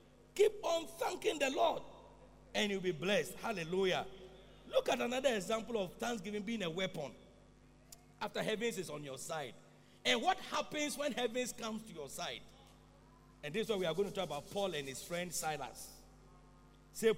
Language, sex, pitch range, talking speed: English, male, 175-250 Hz, 175 wpm